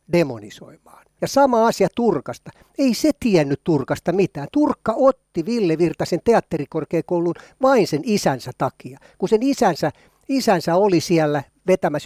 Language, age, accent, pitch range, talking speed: Finnish, 60-79, native, 145-215 Hz, 125 wpm